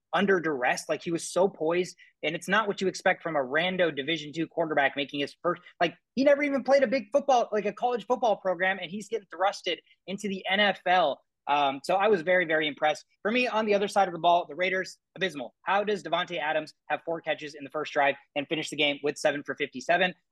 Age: 20-39